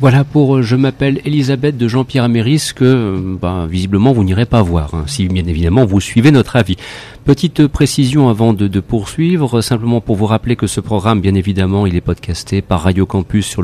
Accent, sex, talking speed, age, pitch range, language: French, male, 200 wpm, 40-59, 100-130 Hz, French